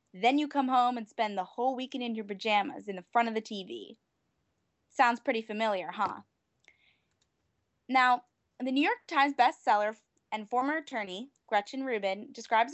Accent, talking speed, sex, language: American, 160 wpm, female, English